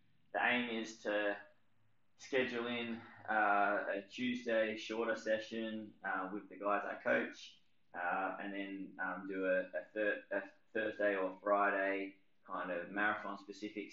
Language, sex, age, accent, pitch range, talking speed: English, male, 20-39, Australian, 95-105 Hz, 140 wpm